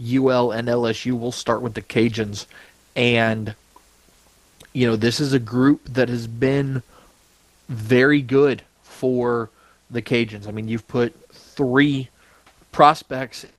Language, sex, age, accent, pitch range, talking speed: English, male, 30-49, American, 115-135 Hz, 130 wpm